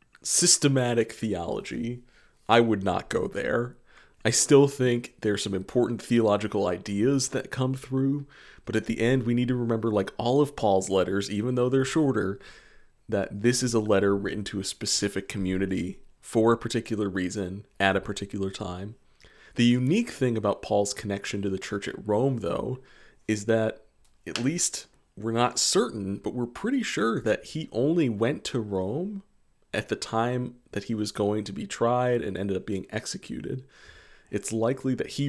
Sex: male